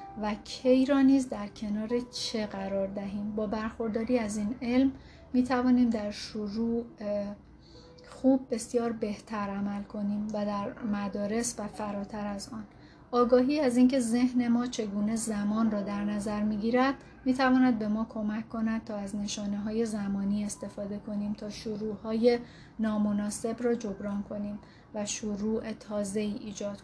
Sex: female